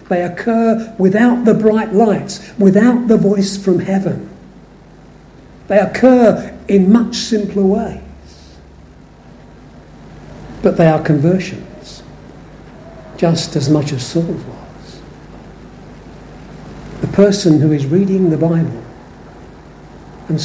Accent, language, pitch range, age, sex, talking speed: British, English, 135-190 Hz, 60-79, male, 105 wpm